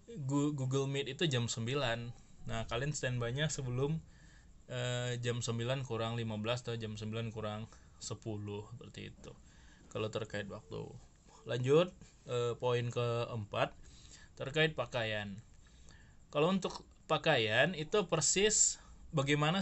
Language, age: Indonesian, 20-39